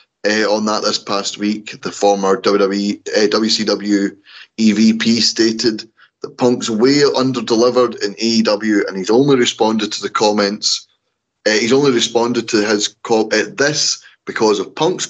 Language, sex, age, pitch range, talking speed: English, male, 30-49, 100-125 Hz, 150 wpm